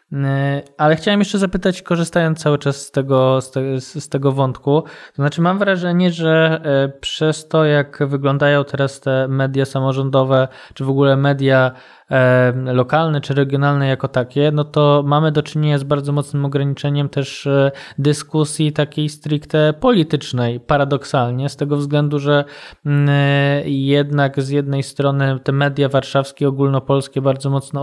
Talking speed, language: 135 wpm, Polish